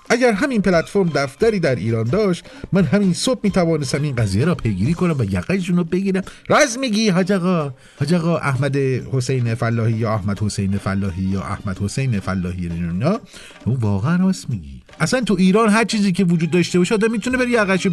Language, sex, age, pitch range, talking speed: Persian, male, 50-69, 120-190 Hz, 185 wpm